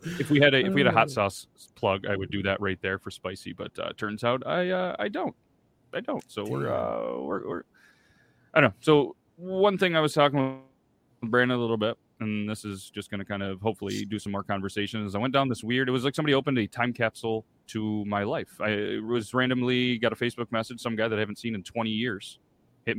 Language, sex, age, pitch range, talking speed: English, male, 30-49, 105-125 Hz, 245 wpm